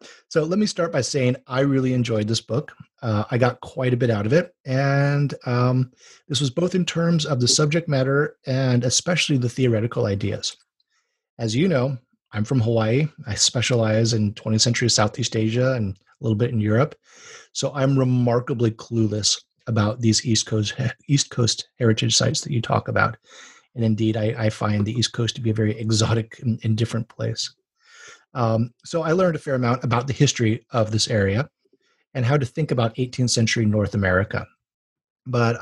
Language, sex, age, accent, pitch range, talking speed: English, male, 30-49, American, 110-135 Hz, 185 wpm